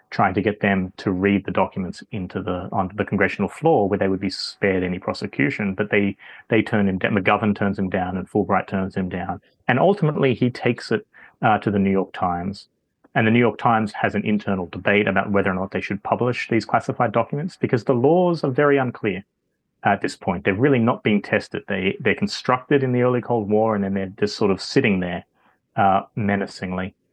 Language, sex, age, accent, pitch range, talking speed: English, male, 30-49, Australian, 95-120 Hz, 215 wpm